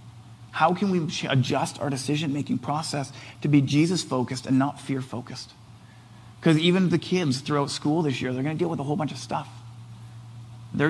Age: 40-59